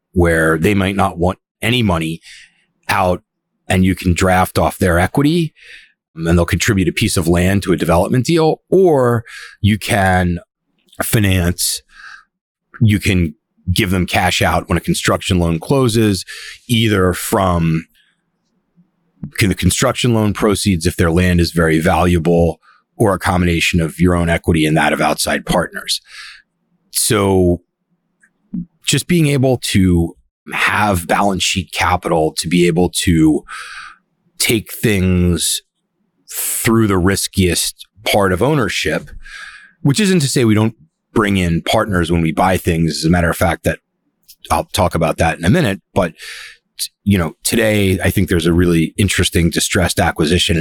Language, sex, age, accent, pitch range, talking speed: English, male, 30-49, American, 85-110 Hz, 145 wpm